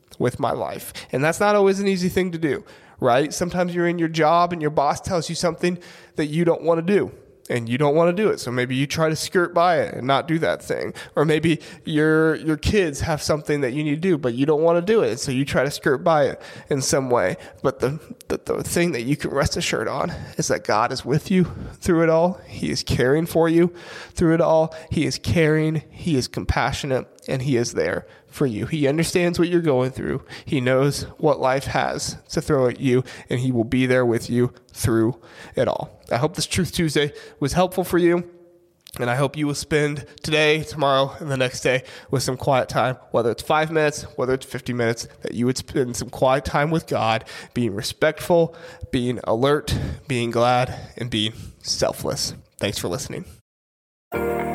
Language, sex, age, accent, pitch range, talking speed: English, male, 20-39, American, 125-170 Hz, 220 wpm